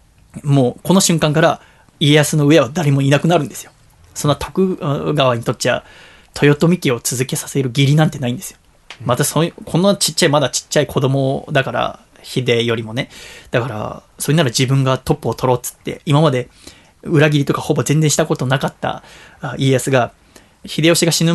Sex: male